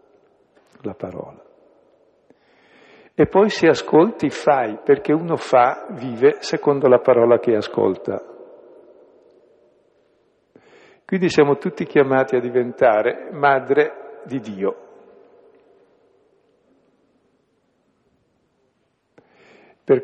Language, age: Italian, 60-79